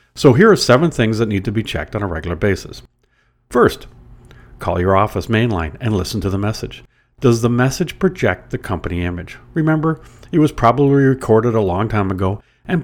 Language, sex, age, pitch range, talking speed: English, male, 50-69, 95-125 Hz, 190 wpm